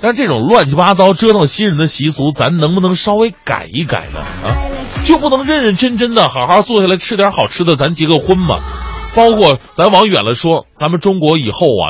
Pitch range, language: 120-185 Hz, Chinese